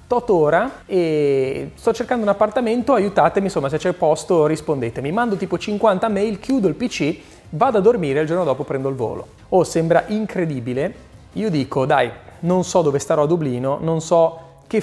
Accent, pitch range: native, 155-240 Hz